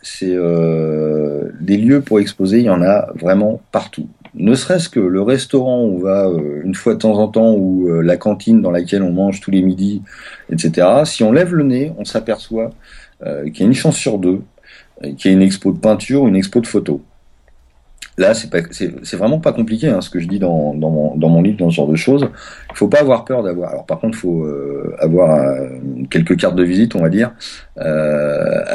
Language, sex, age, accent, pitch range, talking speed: French, male, 40-59, French, 80-115 Hz, 215 wpm